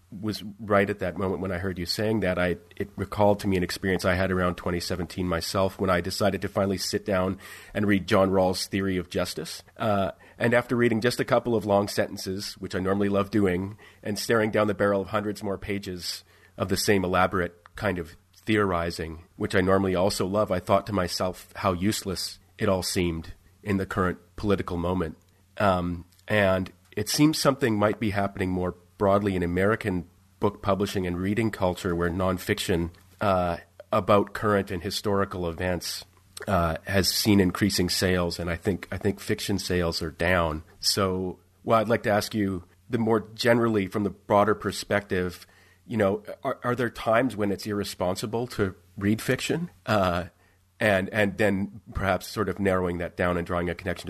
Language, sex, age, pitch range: English, male, 30-49, 90-105 Hz